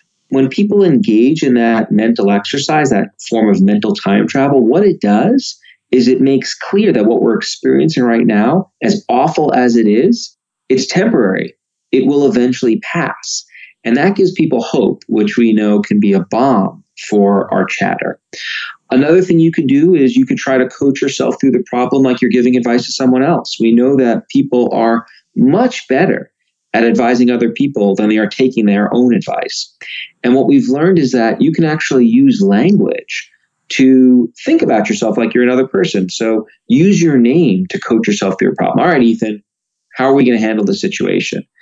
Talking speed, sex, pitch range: 190 wpm, male, 115-185 Hz